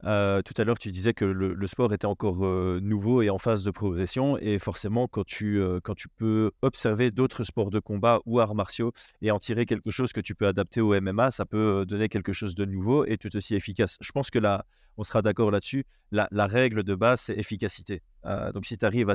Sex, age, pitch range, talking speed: male, 30-49, 100-120 Hz, 240 wpm